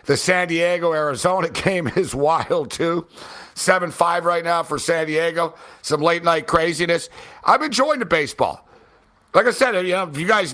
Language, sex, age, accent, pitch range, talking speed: English, male, 60-79, American, 150-185 Hz, 175 wpm